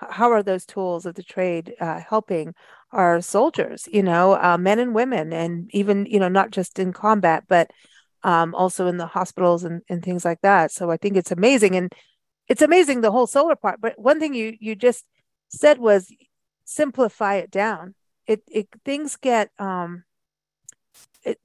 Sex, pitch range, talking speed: female, 185-235 Hz, 180 wpm